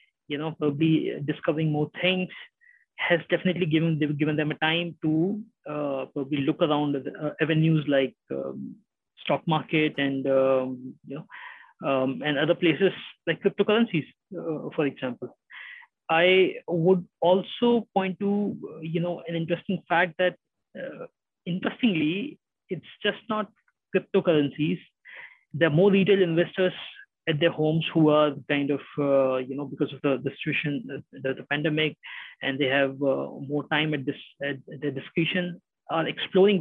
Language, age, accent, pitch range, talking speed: English, 20-39, Indian, 145-185 Hz, 145 wpm